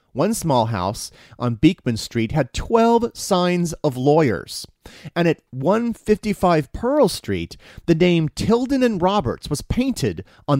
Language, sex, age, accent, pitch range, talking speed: English, male, 30-49, American, 120-180 Hz, 135 wpm